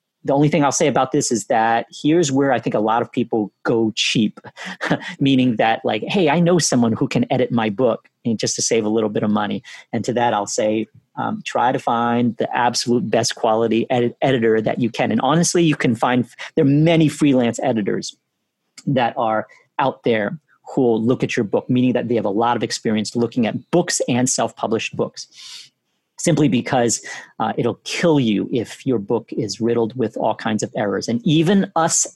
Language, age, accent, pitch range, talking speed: English, 40-59, American, 115-135 Hz, 205 wpm